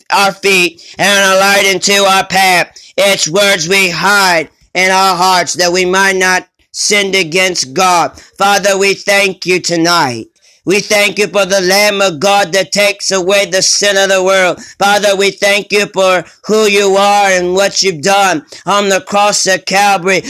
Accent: American